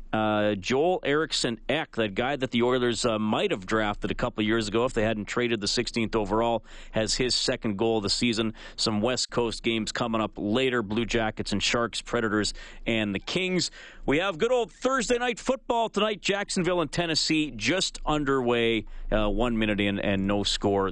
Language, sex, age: English, male, 40-59